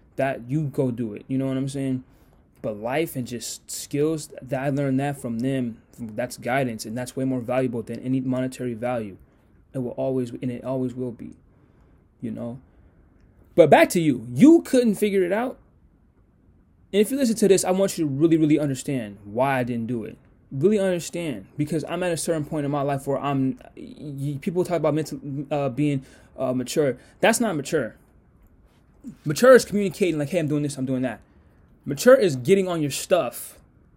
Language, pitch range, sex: English, 130-165 Hz, male